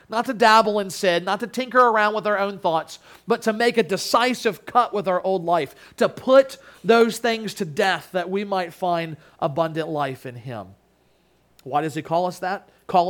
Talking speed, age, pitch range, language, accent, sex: 200 wpm, 40-59, 180-230 Hz, English, American, male